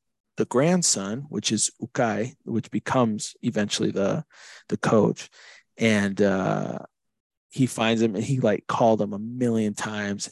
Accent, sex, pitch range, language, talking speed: American, male, 105-130 Hz, English, 140 wpm